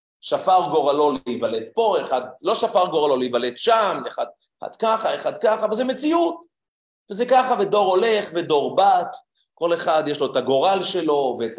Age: 30-49